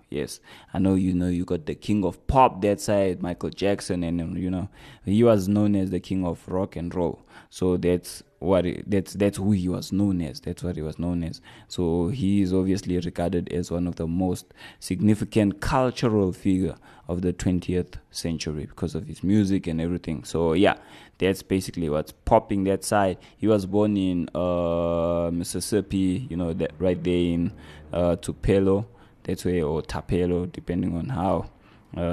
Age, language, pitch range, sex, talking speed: 20-39, English, 85-100 Hz, male, 185 wpm